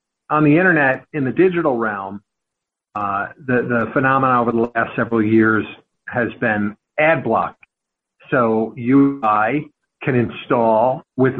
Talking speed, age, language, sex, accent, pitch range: 135 wpm, 50-69, English, male, American, 120-170 Hz